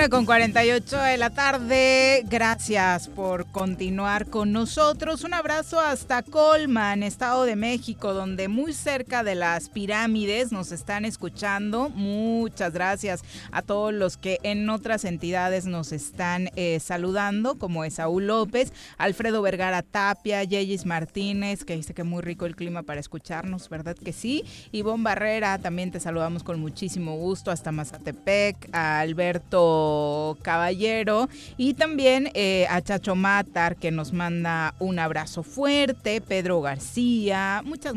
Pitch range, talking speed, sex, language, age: 175-230 Hz, 140 wpm, female, Spanish, 30-49